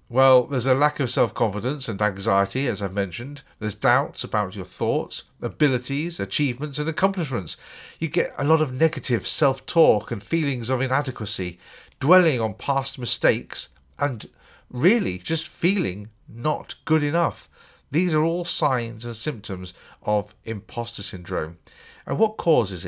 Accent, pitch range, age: British, 105-145 Hz, 50-69